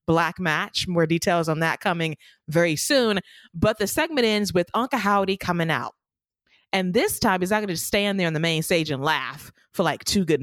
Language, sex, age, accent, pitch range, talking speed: English, female, 20-39, American, 160-215 Hz, 215 wpm